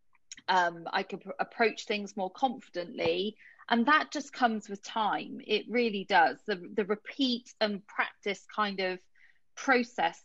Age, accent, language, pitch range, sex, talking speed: 30-49, British, English, 205-255 Hz, female, 140 wpm